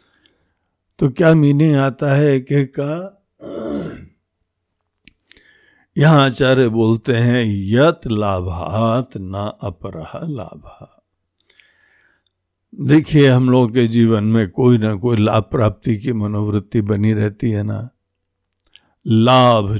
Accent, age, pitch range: native, 60-79, 105-145 Hz